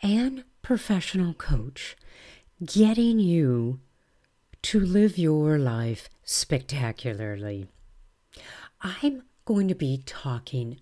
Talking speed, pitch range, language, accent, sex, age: 85 wpm, 130-210 Hz, English, American, female, 50-69